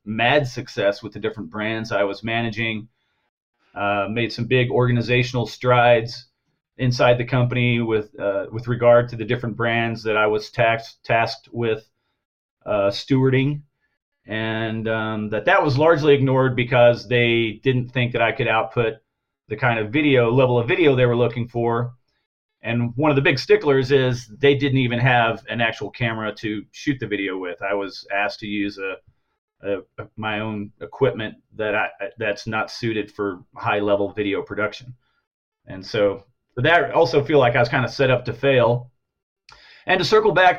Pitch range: 110-135 Hz